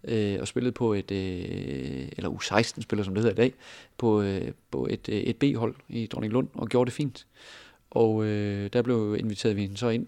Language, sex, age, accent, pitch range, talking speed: Danish, male, 30-49, native, 100-120 Hz, 190 wpm